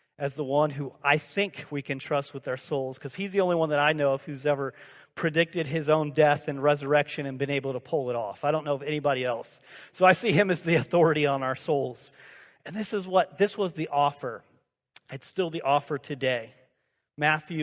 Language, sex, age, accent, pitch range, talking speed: English, male, 40-59, American, 135-165 Hz, 225 wpm